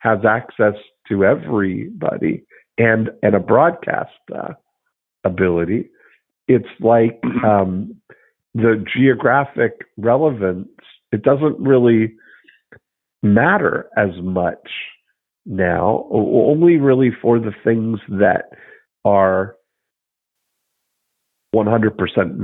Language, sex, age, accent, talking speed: English, male, 50-69, American, 85 wpm